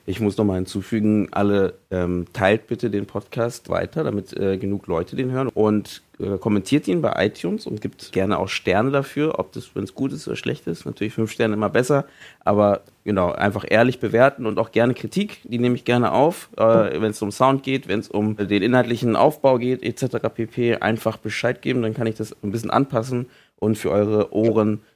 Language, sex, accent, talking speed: German, male, German, 205 wpm